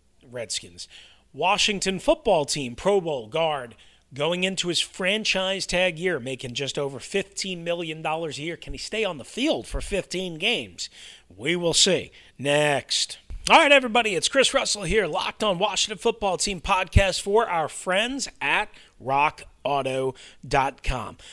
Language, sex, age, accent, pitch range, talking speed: English, male, 40-59, American, 145-205 Hz, 145 wpm